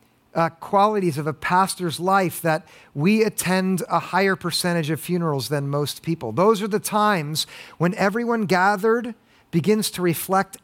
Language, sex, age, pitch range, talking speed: English, male, 50-69, 150-205 Hz, 145 wpm